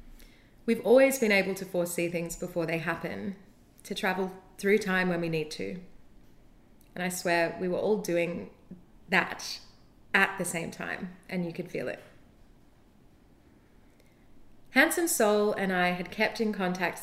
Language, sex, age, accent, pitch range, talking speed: English, female, 30-49, Australian, 175-210 Hz, 150 wpm